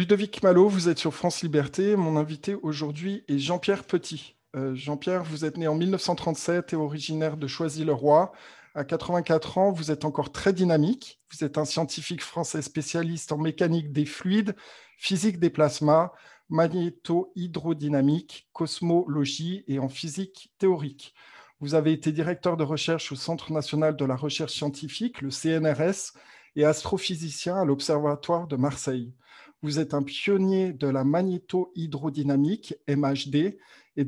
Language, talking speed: French, 145 wpm